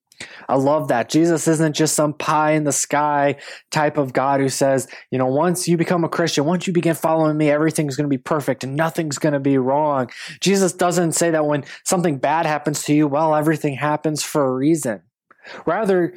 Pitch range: 140-170 Hz